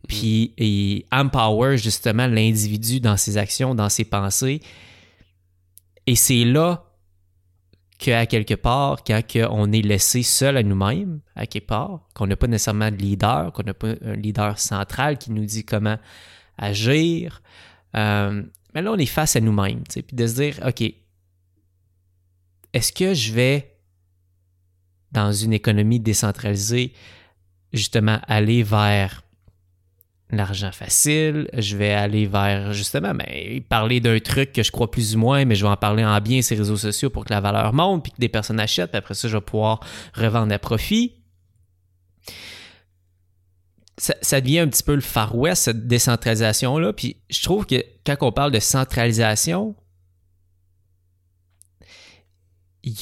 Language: English